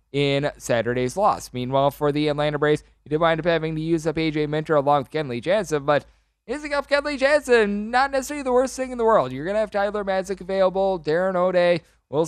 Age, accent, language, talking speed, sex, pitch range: 20-39, American, English, 220 wpm, male, 135-155 Hz